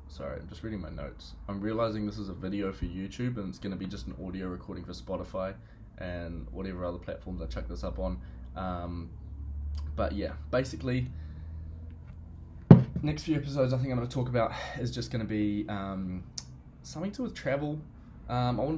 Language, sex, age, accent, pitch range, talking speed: English, male, 20-39, Australian, 90-105 Hz, 200 wpm